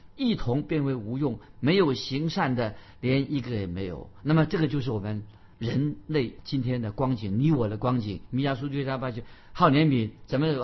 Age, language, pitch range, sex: 50-69, Chinese, 110-150 Hz, male